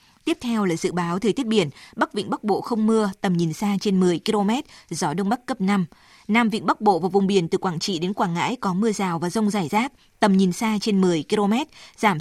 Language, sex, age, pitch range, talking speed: Vietnamese, female, 20-39, 185-225 Hz, 255 wpm